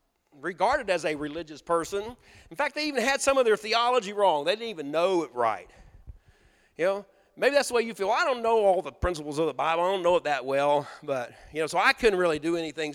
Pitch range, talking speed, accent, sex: 145-215 Hz, 245 wpm, American, male